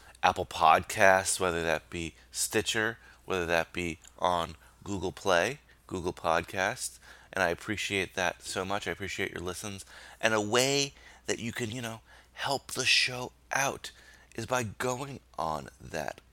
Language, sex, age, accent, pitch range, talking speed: English, male, 30-49, American, 80-115 Hz, 150 wpm